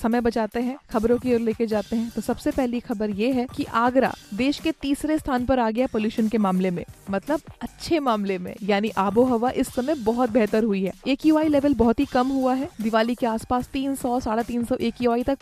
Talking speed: 225 wpm